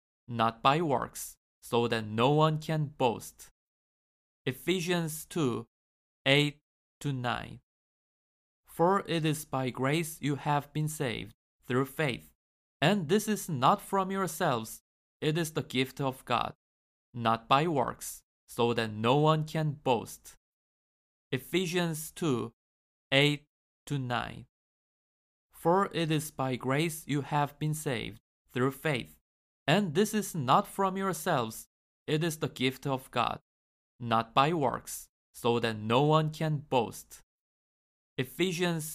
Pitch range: 115-160 Hz